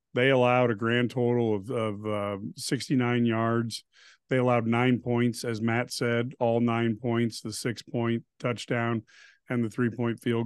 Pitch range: 115-130 Hz